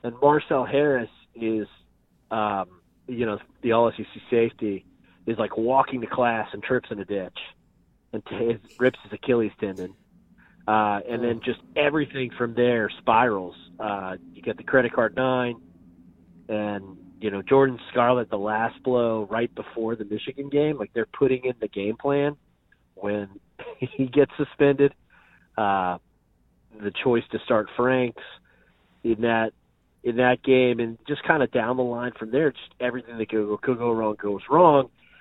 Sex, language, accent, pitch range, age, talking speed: male, English, American, 100-125 Hz, 30-49, 160 wpm